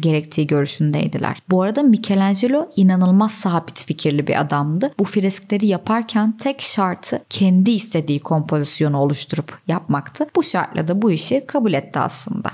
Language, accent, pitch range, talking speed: Turkish, native, 165-230 Hz, 135 wpm